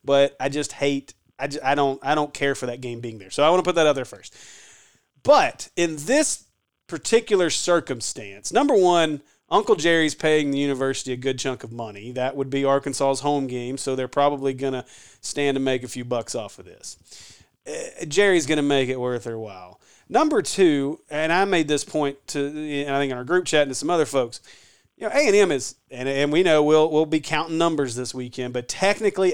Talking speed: 215 wpm